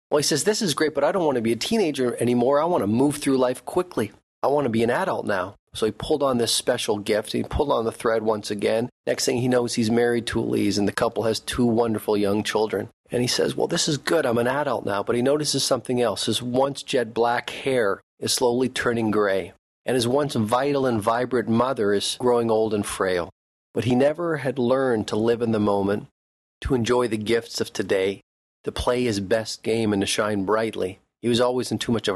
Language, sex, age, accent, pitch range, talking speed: English, male, 40-59, American, 105-120 Hz, 240 wpm